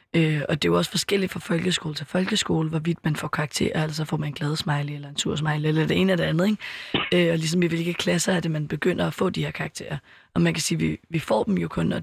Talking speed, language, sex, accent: 285 wpm, Danish, female, native